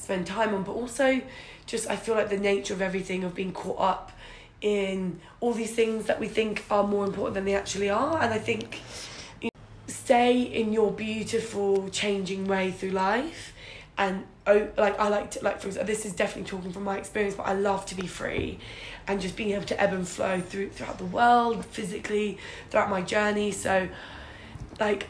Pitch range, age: 195-225 Hz, 20-39